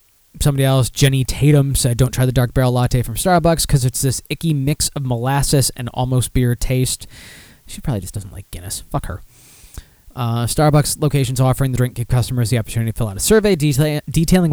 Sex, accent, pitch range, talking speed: male, American, 115-140 Hz, 200 wpm